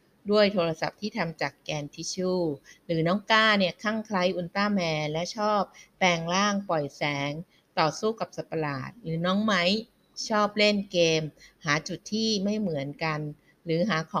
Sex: female